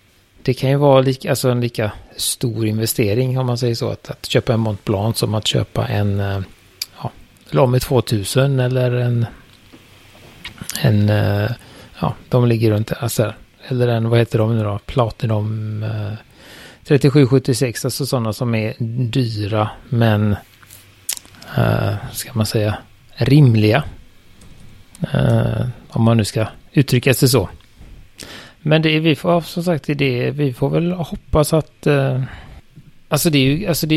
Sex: male